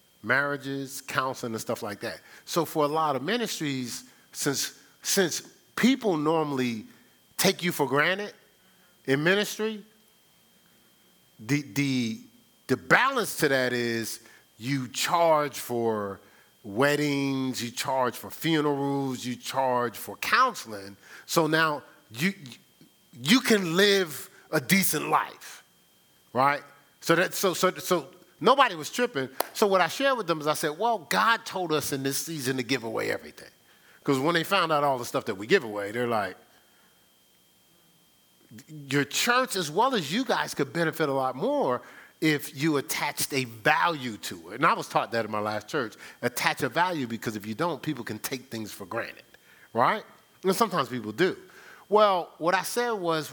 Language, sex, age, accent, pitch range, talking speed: English, male, 40-59, American, 125-185 Hz, 160 wpm